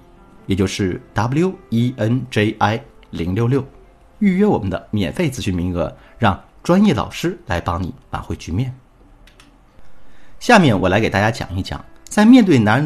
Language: Chinese